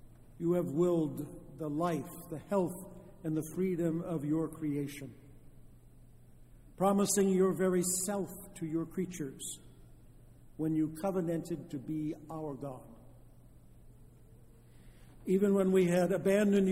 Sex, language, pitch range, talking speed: male, English, 140-175 Hz, 115 wpm